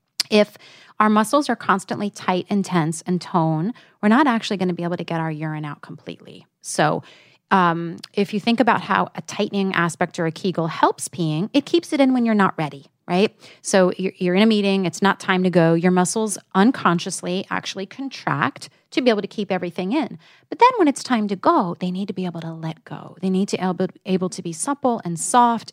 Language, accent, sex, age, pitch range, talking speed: English, American, female, 30-49, 175-215 Hz, 220 wpm